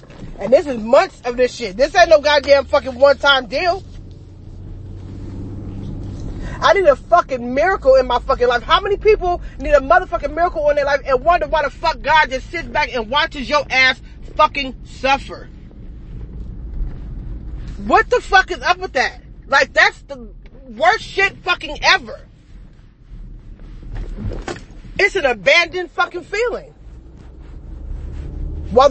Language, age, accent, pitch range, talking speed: English, 30-49, American, 245-325 Hz, 140 wpm